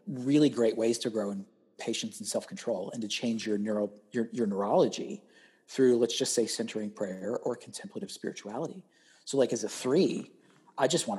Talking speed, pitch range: 180 wpm, 115-170 Hz